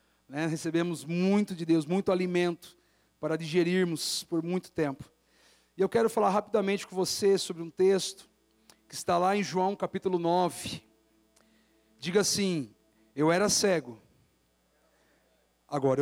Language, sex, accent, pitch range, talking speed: Portuguese, male, Brazilian, 145-200 Hz, 130 wpm